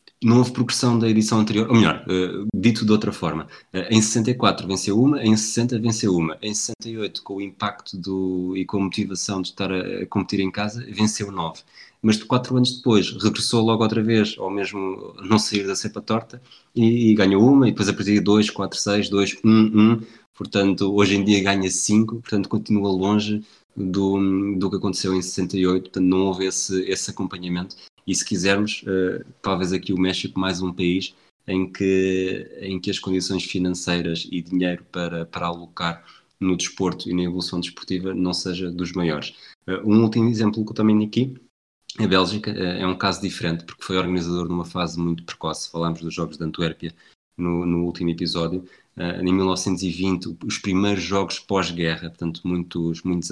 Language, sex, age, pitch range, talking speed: Portuguese, male, 20-39, 90-105 Hz, 185 wpm